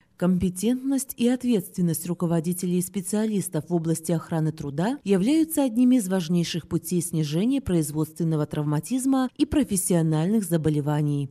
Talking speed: 110 wpm